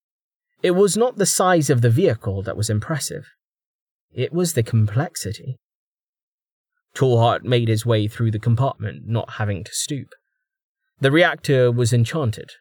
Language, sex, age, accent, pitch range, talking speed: English, male, 30-49, British, 110-150 Hz, 145 wpm